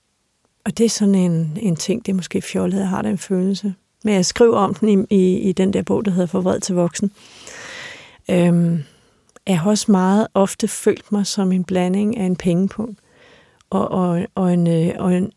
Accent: native